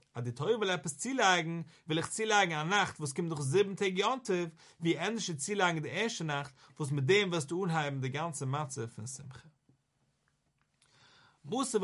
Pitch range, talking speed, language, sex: 135-190 Hz, 190 wpm, English, male